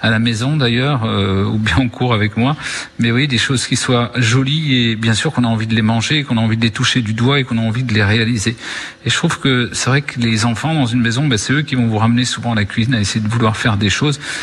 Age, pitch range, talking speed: 40-59, 110-130 Hz, 305 wpm